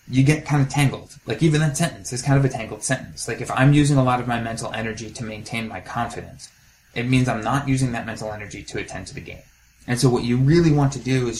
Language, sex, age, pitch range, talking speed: English, male, 20-39, 110-130 Hz, 270 wpm